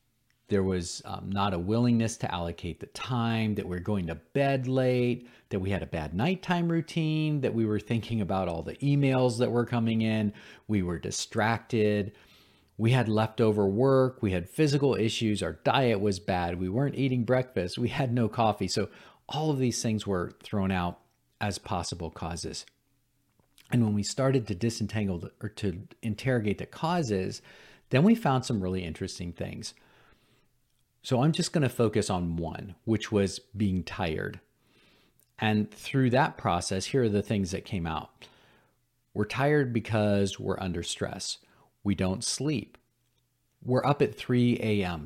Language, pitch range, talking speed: English, 95-125 Hz, 165 wpm